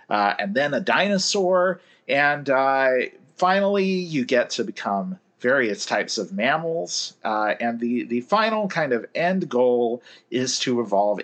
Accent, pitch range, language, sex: American, 120-195 Hz, English, male